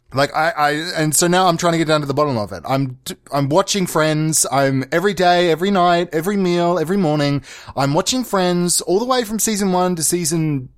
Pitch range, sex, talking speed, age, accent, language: 125-175 Hz, male, 225 wpm, 20-39, Australian, English